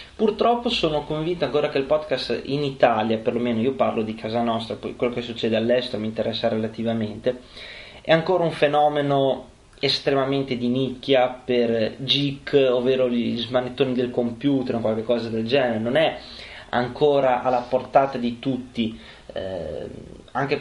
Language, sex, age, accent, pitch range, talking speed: Italian, male, 20-39, native, 115-135 Hz, 140 wpm